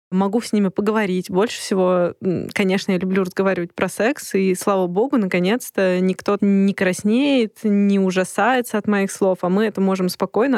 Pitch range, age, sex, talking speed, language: 180-205 Hz, 20-39, female, 165 wpm, Russian